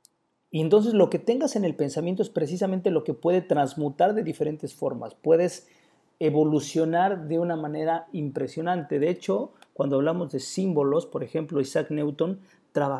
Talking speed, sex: 150 wpm, male